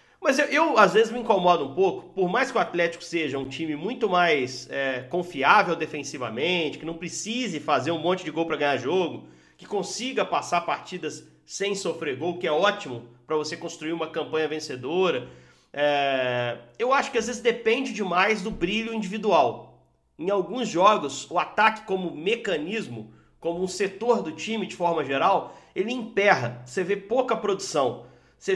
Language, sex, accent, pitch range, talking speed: Portuguese, male, Brazilian, 170-220 Hz, 170 wpm